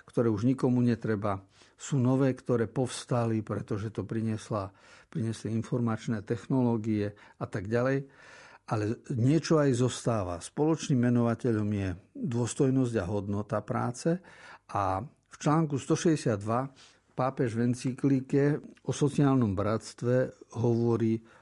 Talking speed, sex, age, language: 105 wpm, male, 50-69, Slovak